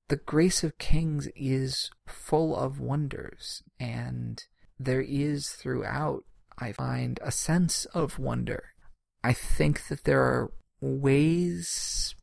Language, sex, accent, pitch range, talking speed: English, male, American, 120-155 Hz, 120 wpm